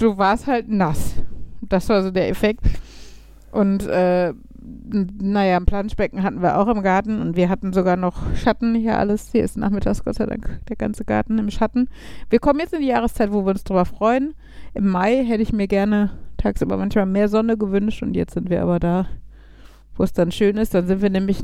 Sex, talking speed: female, 210 wpm